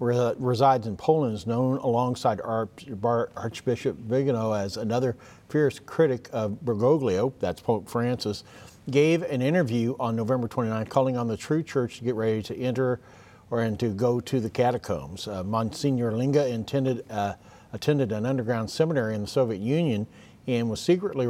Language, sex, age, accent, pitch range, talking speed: English, male, 50-69, American, 115-140 Hz, 150 wpm